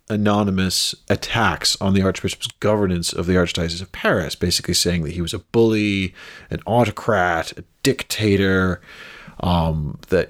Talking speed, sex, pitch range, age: 140 wpm, male, 90-115 Hz, 40-59